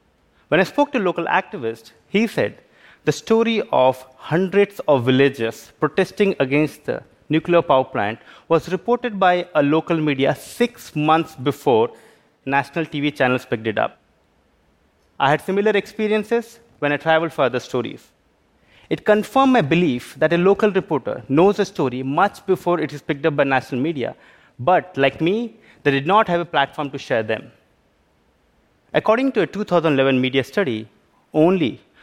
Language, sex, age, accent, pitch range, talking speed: English, male, 30-49, Indian, 135-185 Hz, 160 wpm